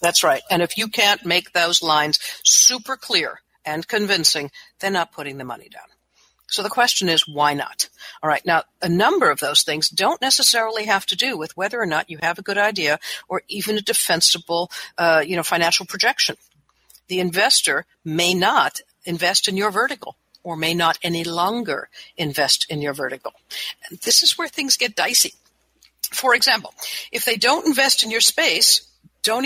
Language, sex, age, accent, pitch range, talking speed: English, female, 60-79, American, 170-225 Hz, 185 wpm